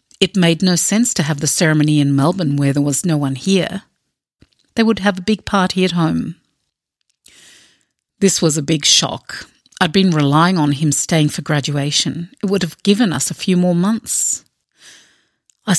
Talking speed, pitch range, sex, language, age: 180 wpm, 150-185 Hz, female, English, 50-69